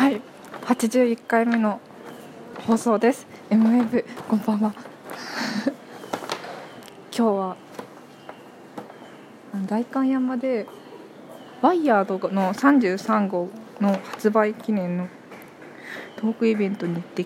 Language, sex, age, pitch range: Japanese, female, 20-39, 185-240 Hz